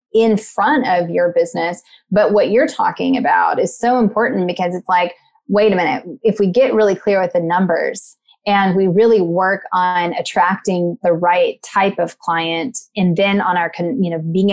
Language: English